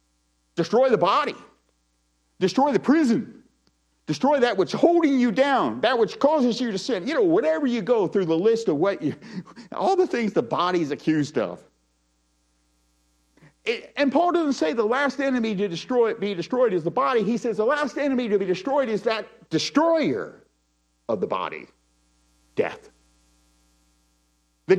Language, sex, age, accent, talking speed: English, male, 50-69, American, 160 wpm